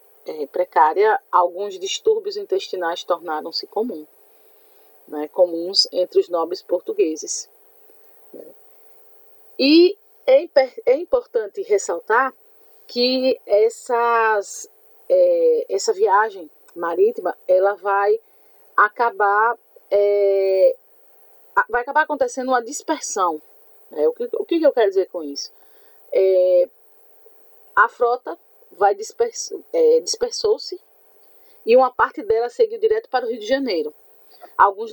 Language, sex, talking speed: Portuguese, female, 90 wpm